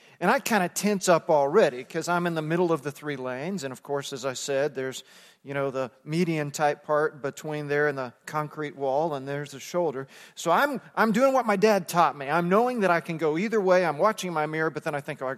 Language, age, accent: English, 40-59, American